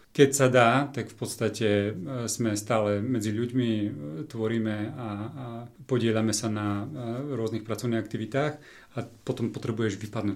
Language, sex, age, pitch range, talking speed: Slovak, male, 30-49, 105-125 Hz, 140 wpm